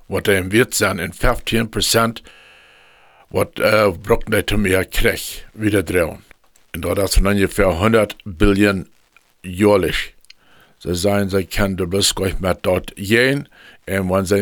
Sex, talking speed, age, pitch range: male, 135 wpm, 60-79, 90-110 Hz